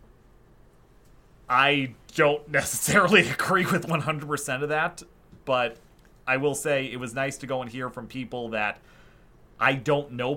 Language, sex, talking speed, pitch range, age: English, male, 145 wpm, 115-155 Hz, 30-49